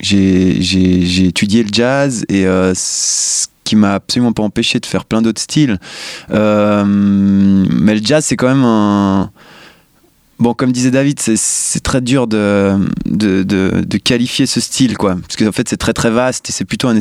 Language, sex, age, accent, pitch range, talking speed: French, male, 20-39, French, 100-125 Hz, 195 wpm